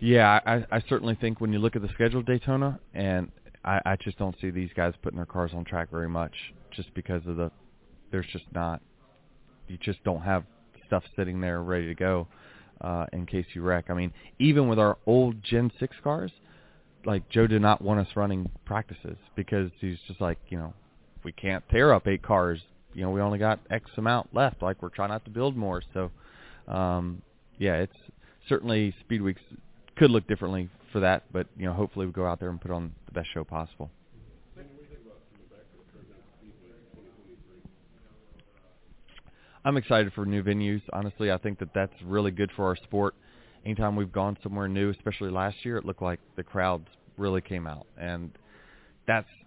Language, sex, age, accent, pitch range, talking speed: English, male, 30-49, American, 90-110 Hz, 190 wpm